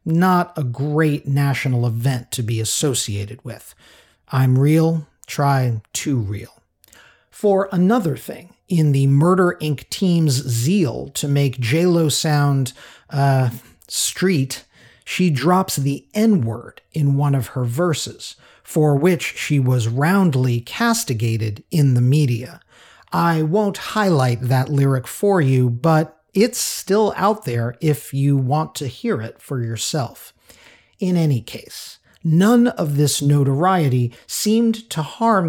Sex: male